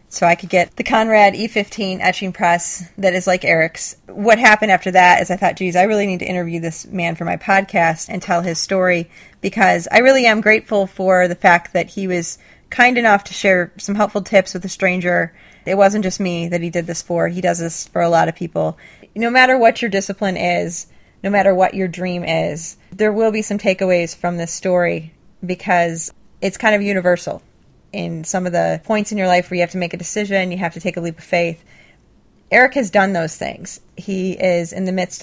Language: English